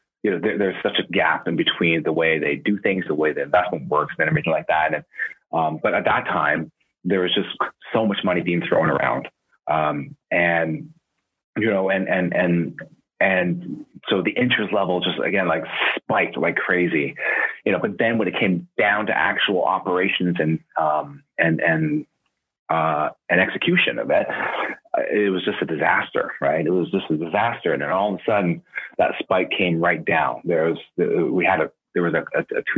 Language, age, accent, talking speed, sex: English, 30-49, American, 200 wpm, male